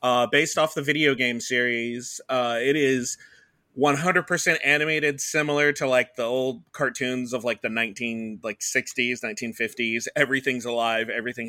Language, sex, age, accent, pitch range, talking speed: English, male, 30-49, American, 120-145 Hz, 145 wpm